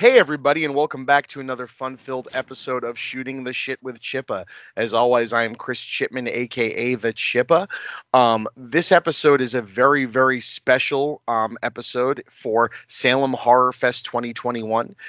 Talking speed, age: 155 wpm, 30-49